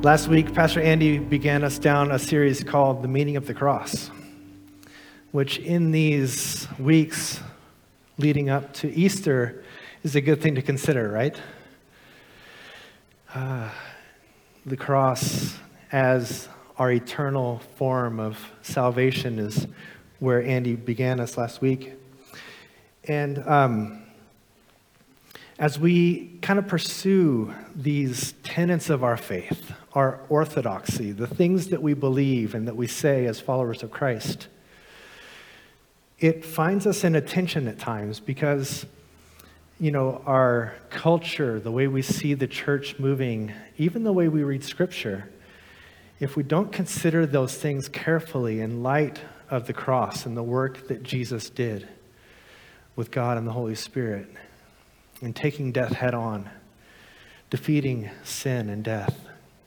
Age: 40-59